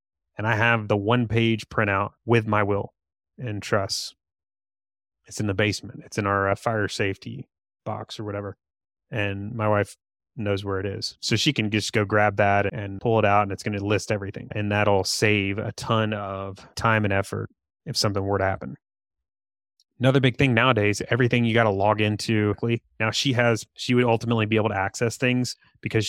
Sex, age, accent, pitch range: male, 30-49, American, 100-115 Hz